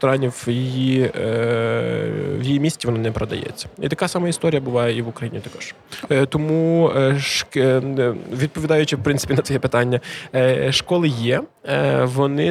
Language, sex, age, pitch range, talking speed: Ukrainian, male, 20-39, 125-150 Hz, 130 wpm